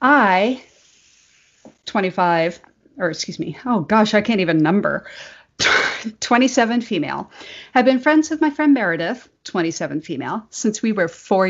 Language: English